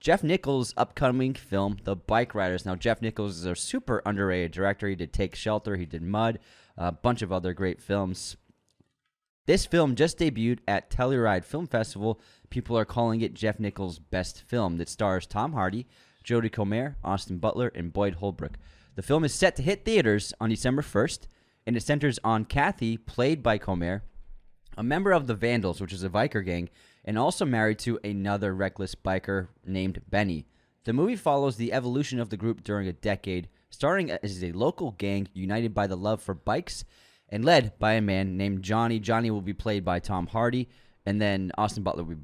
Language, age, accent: English, 20-39, American